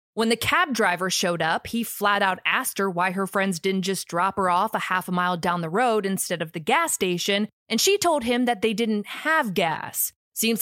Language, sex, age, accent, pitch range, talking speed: English, female, 20-39, American, 190-260 Hz, 230 wpm